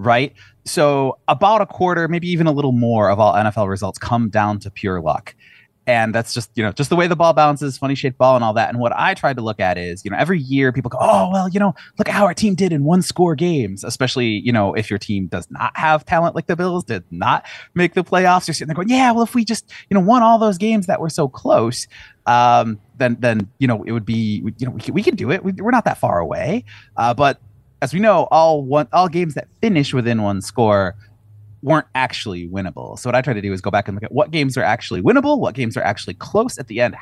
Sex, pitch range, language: male, 110-165 Hz, English